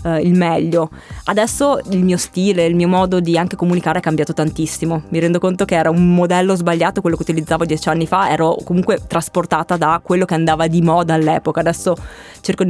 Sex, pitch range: female, 160-180 Hz